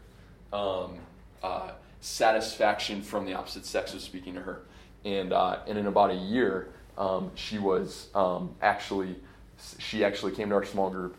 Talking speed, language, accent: 160 wpm, English, American